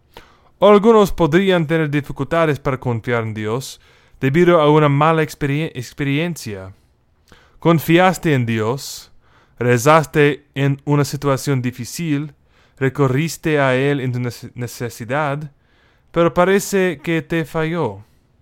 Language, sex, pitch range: English, male, 125-160 Hz